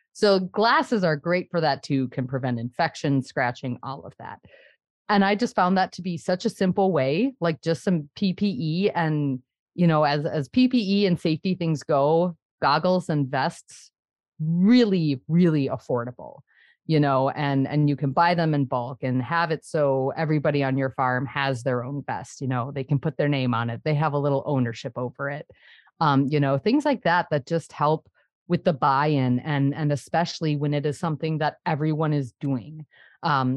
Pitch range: 140-175 Hz